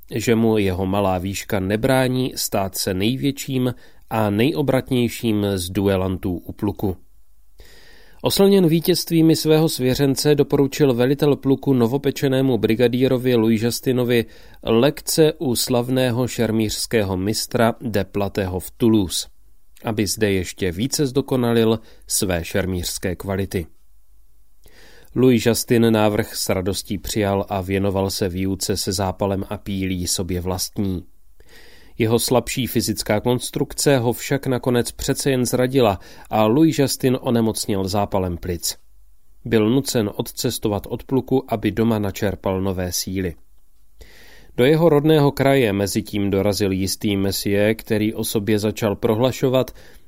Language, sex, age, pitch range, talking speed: Czech, male, 30-49, 100-130 Hz, 115 wpm